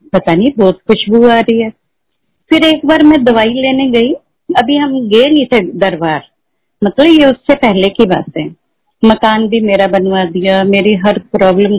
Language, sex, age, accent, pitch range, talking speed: Hindi, female, 50-69, native, 195-270 Hz, 180 wpm